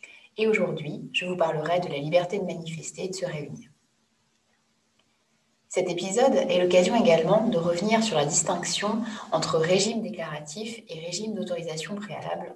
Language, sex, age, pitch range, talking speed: French, female, 20-39, 160-195 Hz, 150 wpm